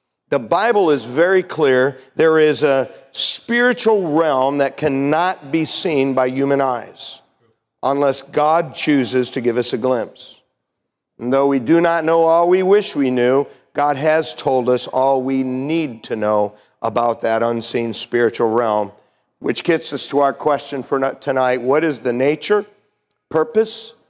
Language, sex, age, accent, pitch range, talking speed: English, male, 50-69, American, 125-160 Hz, 155 wpm